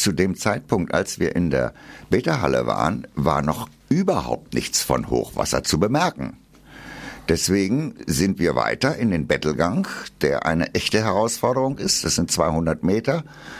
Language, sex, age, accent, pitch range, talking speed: German, male, 60-79, German, 90-130 Hz, 145 wpm